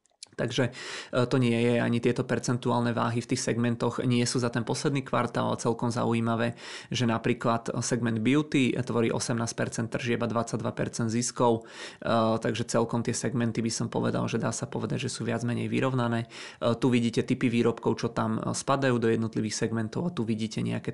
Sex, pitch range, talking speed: male, 115-125 Hz, 165 wpm